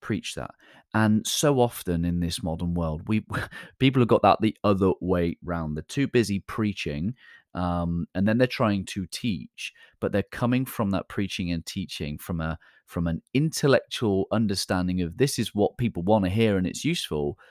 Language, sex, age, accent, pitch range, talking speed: English, male, 30-49, British, 85-115 Hz, 185 wpm